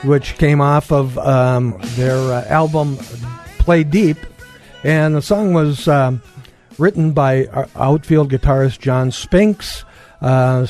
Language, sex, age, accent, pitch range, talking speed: English, male, 60-79, American, 125-155 Hz, 125 wpm